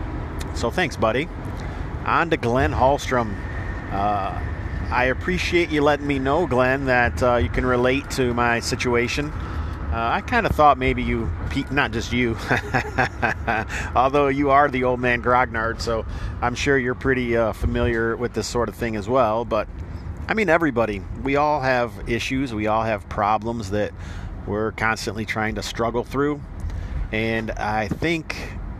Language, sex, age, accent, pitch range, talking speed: English, male, 50-69, American, 100-130 Hz, 160 wpm